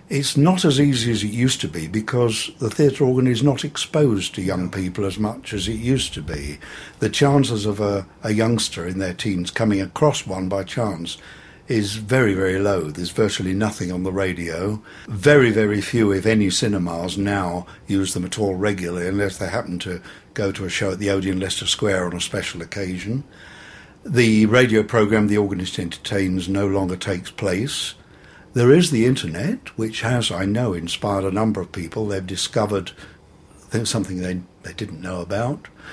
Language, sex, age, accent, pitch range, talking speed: English, male, 60-79, British, 95-115 Hz, 185 wpm